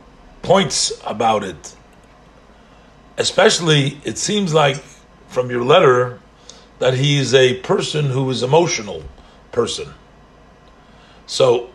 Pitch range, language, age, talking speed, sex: 130-170 Hz, English, 50-69, 100 wpm, male